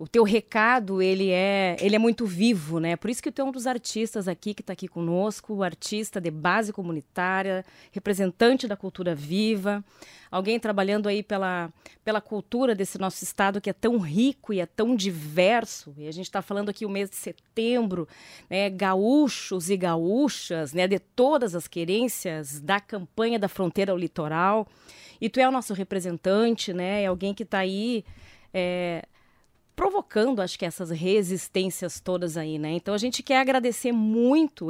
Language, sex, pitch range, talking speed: Portuguese, female, 180-230 Hz, 170 wpm